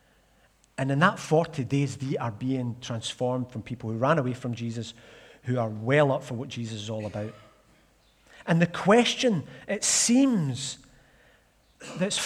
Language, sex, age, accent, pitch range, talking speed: English, male, 40-59, British, 140-195 Hz, 155 wpm